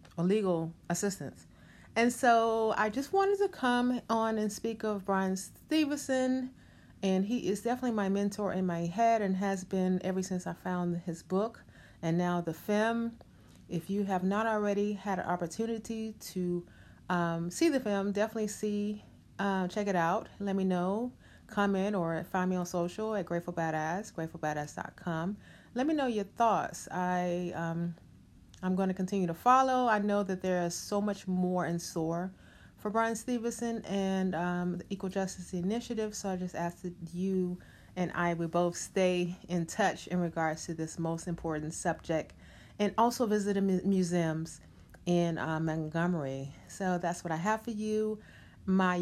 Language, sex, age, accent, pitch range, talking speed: English, female, 30-49, American, 175-215 Hz, 170 wpm